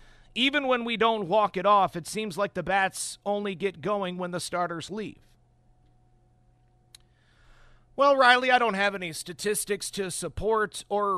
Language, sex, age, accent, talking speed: English, male, 50-69, American, 155 wpm